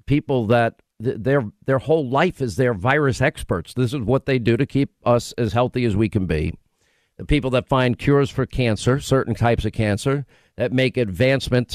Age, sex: 50-69, male